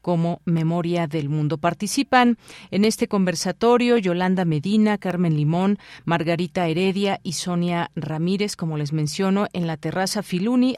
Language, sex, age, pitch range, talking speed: Spanish, female, 40-59, 160-195 Hz, 135 wpm